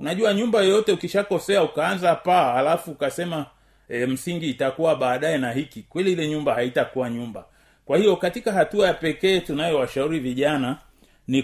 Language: Swahili